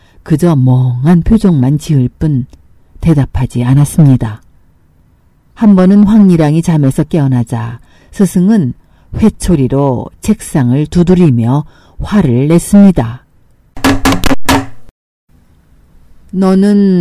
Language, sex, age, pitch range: Korean, female, 50-69, 125-185 Hz